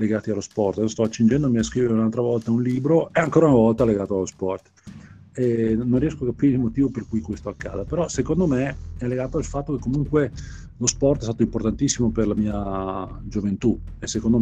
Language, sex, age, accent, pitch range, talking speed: Italian, male, 40-59, native, 100-125 Hz, 210 wpm